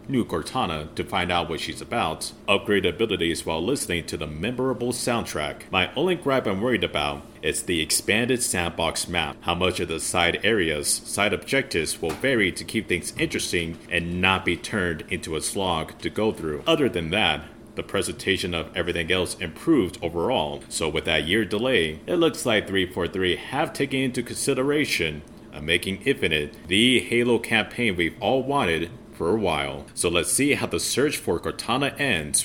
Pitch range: 85-125 Hz